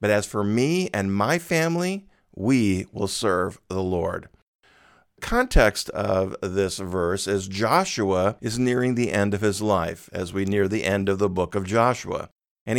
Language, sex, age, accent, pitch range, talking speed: English, male, 50-69, American, 100-120 Hz, 170 wpm